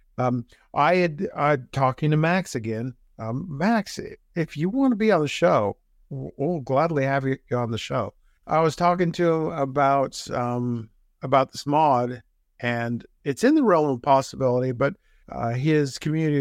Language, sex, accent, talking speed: English, male, American, 170 wpm